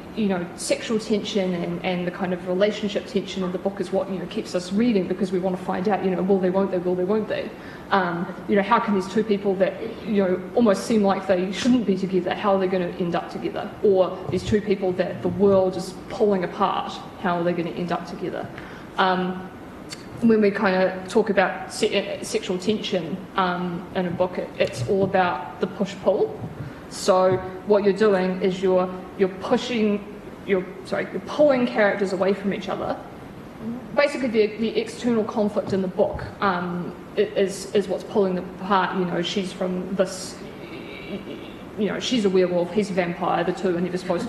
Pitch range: 185-205 Hz